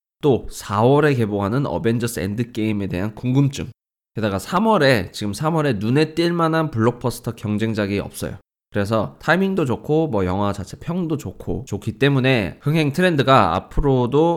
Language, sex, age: Korean, male, 20-39